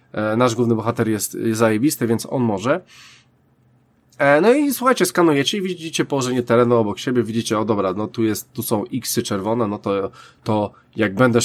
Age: 20-39